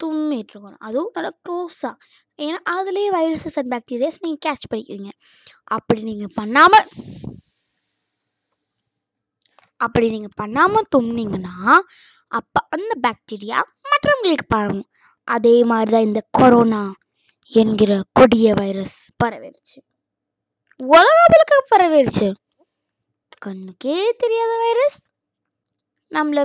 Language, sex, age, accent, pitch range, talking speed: Tamil, female, 20-39, native, 225-345 Hz, 55 wpm